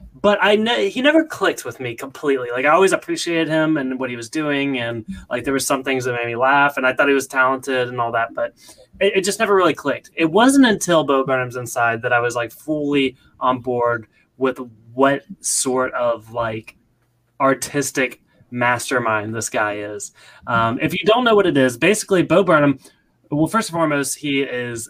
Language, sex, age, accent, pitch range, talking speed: English, male, 20-39, American, 125-165 Hz, 205 wpm